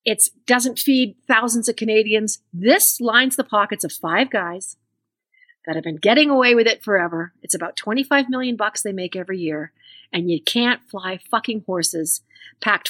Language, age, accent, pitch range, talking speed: English, 40-59, American, 190-255 Hz, 170 wpm